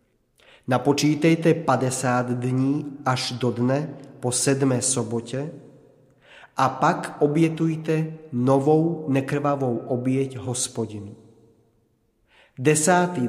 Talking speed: 75 wpm